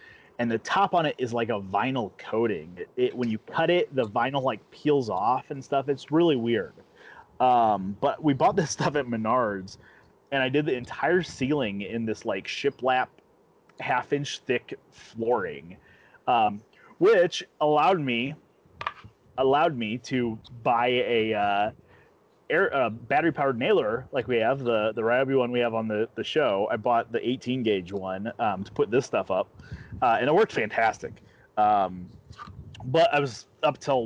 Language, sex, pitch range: English, male, 110-135 Hz